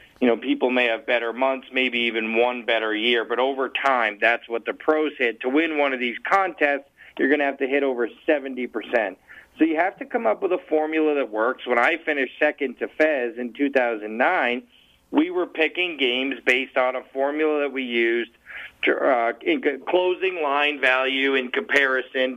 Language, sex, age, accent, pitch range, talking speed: English, male, 40-59, American, 125-160 Hz, 195 wpm